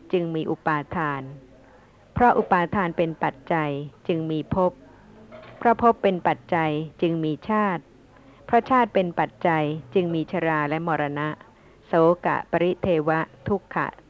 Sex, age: female, 60-79